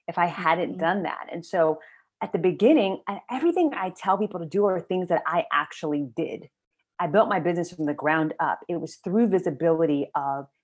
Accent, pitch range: American, 155-220 Hz